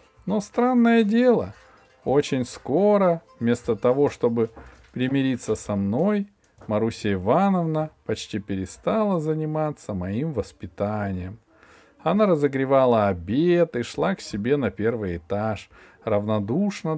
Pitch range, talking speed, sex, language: 100-170 Hz, 105 wpm, male, Russian